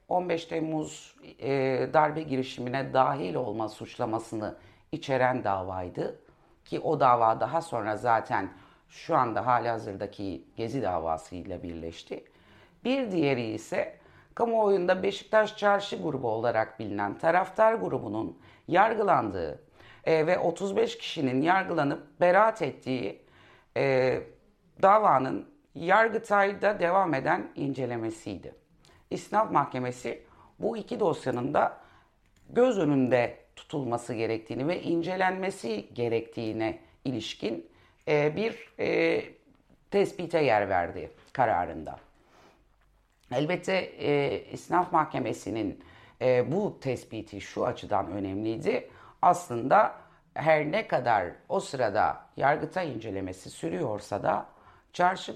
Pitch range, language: 115-180 Hz, Turkish